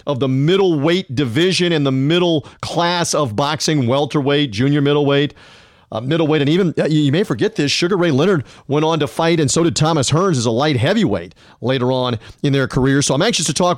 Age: 40-59